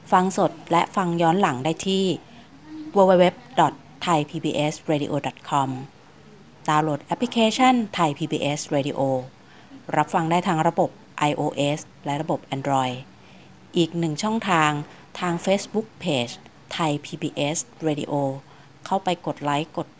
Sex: female